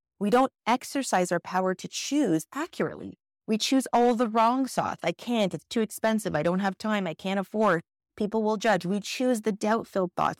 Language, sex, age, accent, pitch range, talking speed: English, female, 30-49, American, 160-225 Hz, 195 wpm